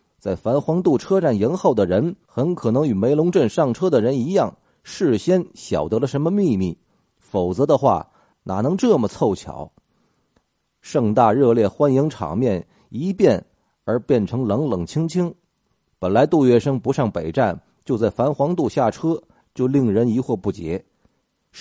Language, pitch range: Chinese, 105-150 Hz